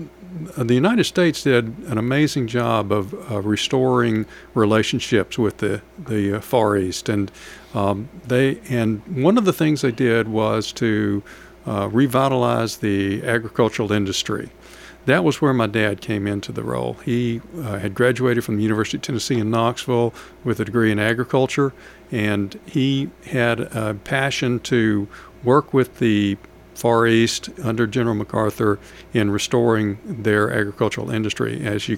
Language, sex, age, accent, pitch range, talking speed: English, male, 60-79, American, 105-125 Hz, 145 wpm